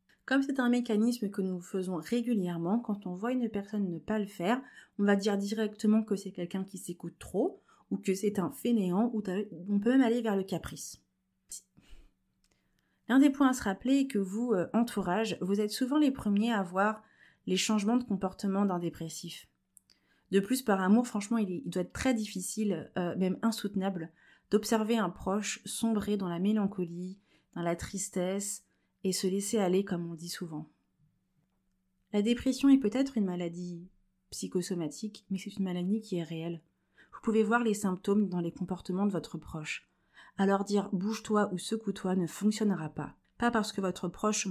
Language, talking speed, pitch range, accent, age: French, 180 wpm, 180-220 Hz, French, 30-49